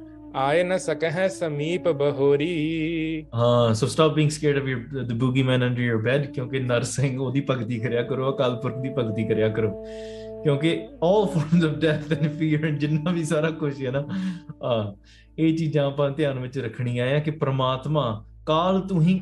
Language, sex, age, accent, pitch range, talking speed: English, male, 20-39, Indian, 135-170 Hz, 95 wpm